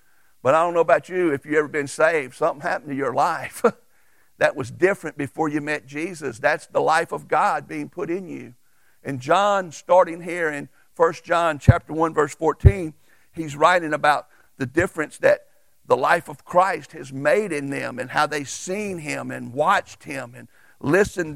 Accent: American